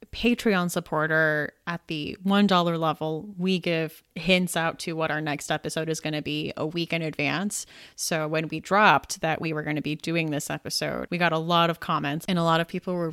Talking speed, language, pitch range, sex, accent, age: 220 wpm, English, 155-190 Hz, female, American, 30-49